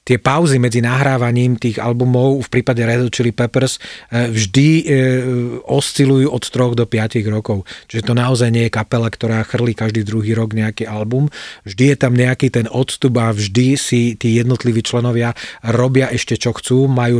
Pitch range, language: 115-135 Hz, Slovak